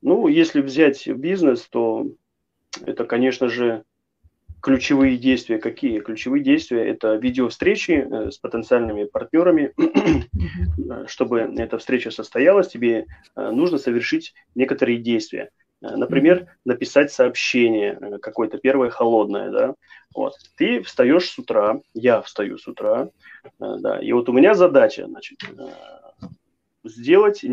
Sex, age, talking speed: male, 30-49, 105 wpm